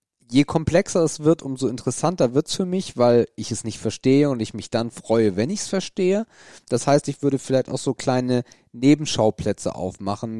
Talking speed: 190 wpm